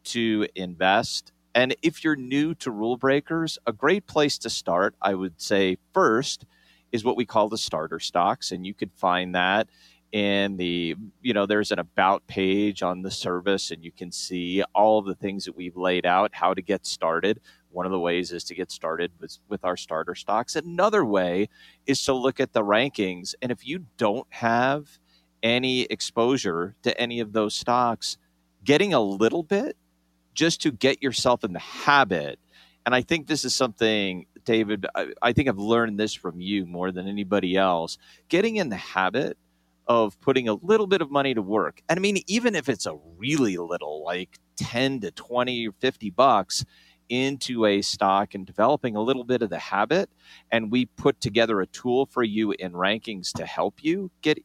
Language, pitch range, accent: English, 95-135 Hz, American